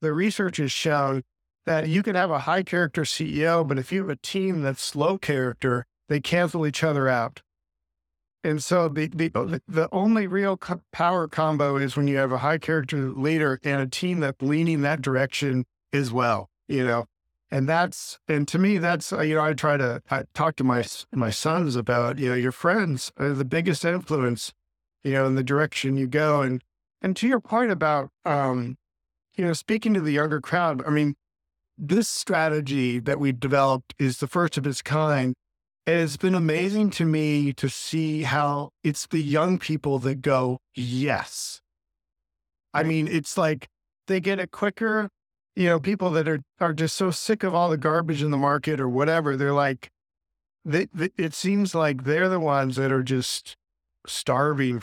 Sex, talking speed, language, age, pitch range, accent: male, 185 wpm, English, 50-69, 130-165 Hz, American